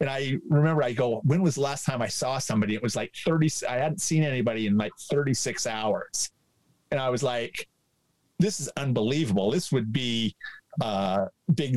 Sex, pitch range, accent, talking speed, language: male, 115-150 Hz, American, 190 wpm, English